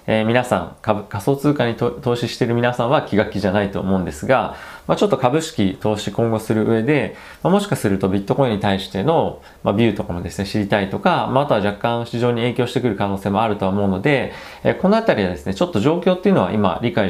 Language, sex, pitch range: Japanese, male, 95-130 Hz